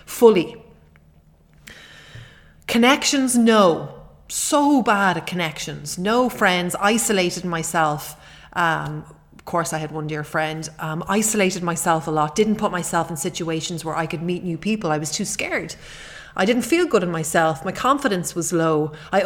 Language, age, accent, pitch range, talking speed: English, 30-49, Irish, 165-205 Hz, 155 wpm